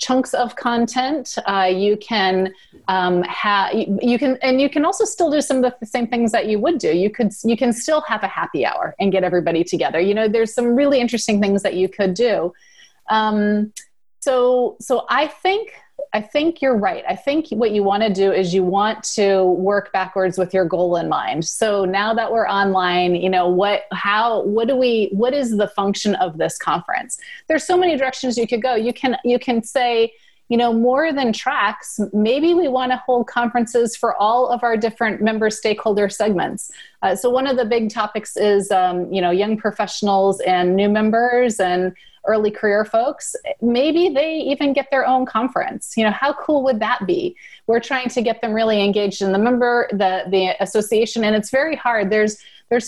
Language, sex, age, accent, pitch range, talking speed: English, female, 30-49, American, 195-250 Hz, 205 wpm